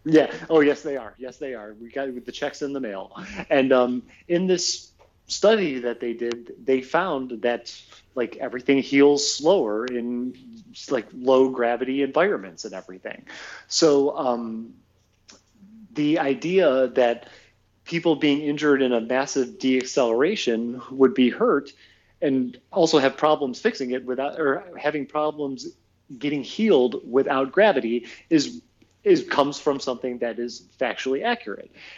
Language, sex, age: English, male, 30-49